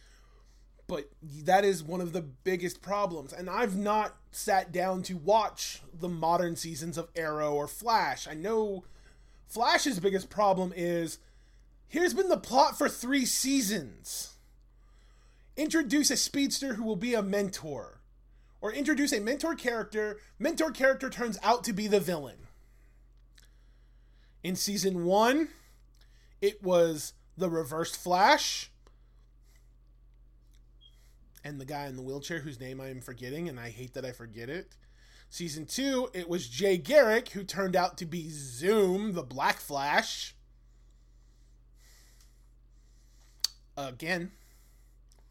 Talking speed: 130 wpm